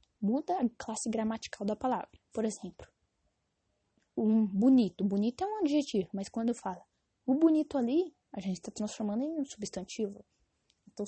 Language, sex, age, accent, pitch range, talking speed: English, female, 10-29, Brazilian, 205-255 Hz, 160 wpm